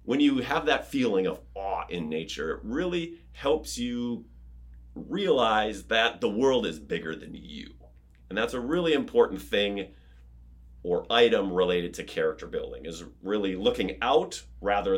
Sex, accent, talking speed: male, American, 150 wpm